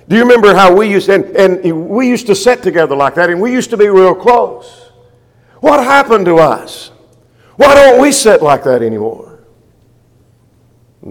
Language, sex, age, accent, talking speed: English, male, 50-69, American, 185 wpm